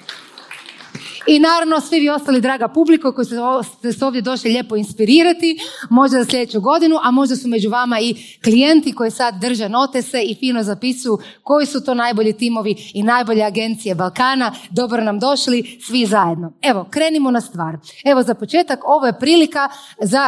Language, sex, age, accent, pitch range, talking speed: Croatian, female, 30-49, native, 220-280 Hz, 170 wpm